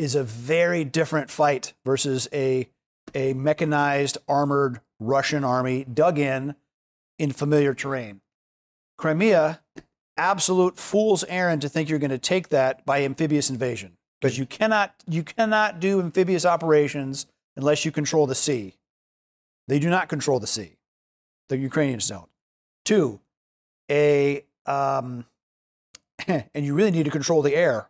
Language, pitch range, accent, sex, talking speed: English, 135-165 Hz, American, male, 140 wpm